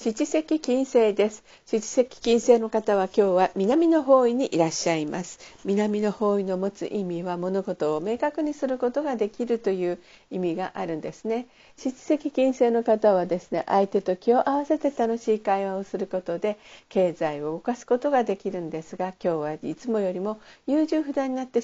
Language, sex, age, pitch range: Japanese, female, 50-69, 185-245 Hz